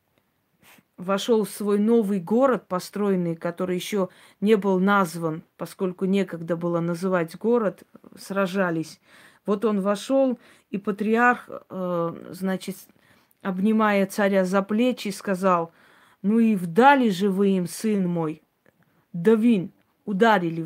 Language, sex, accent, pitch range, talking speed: Russian, female, native, 180-220 Hz, 115 wpm